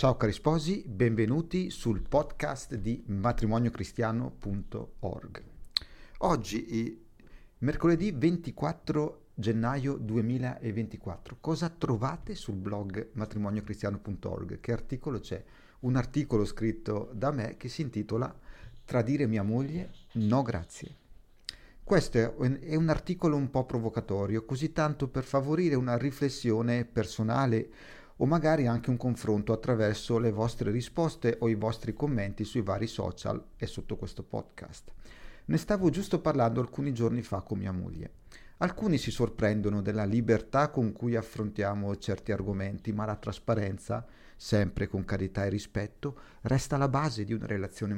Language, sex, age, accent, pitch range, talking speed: Italian, male, 50-69, native, 105-135 Hz, 130 wpm